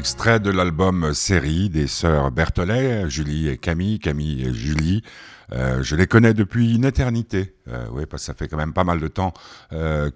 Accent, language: French, French